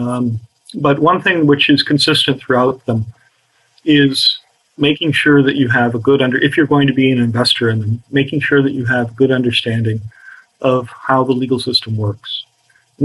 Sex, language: male, English